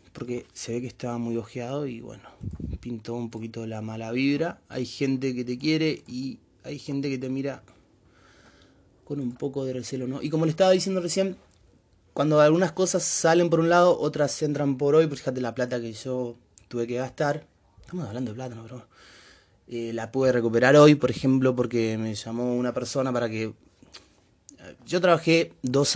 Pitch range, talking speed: 120-165 Hz, 185 wpm